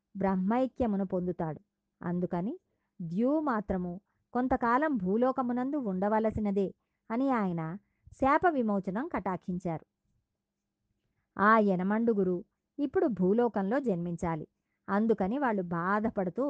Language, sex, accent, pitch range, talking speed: Telugu, male, native, 185-250 Hz, 75 wpm